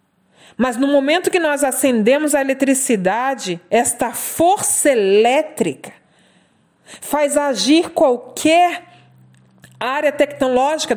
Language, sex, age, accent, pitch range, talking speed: Portuguese, female, 40-59, Brazilian, 230-290 Hz, 90 wpm